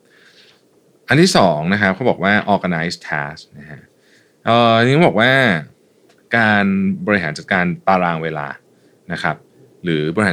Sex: male